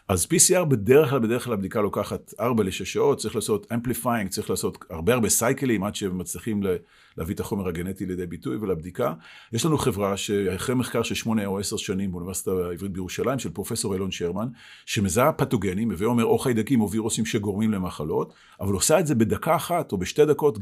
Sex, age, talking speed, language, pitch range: male, 40-59, 190 wpm, Hebrew, 95-120 Hz